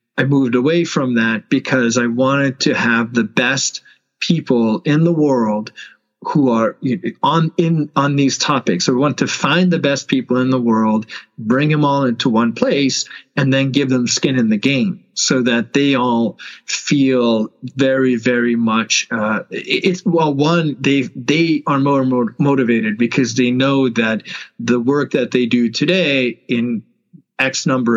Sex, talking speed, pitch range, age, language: male, 165 wpm, 120-155 Hz, 40-59, English